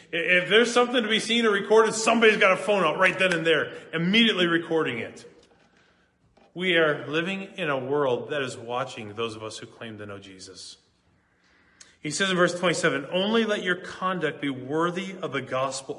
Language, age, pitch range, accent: English, 30-49, 155-210 Hz, American